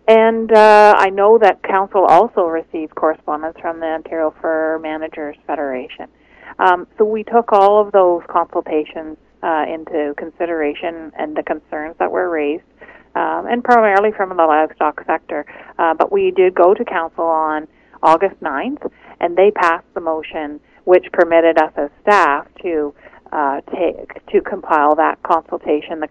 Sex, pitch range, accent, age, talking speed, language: female, 155-195 Hz, American, 40-59, 155 wpm, English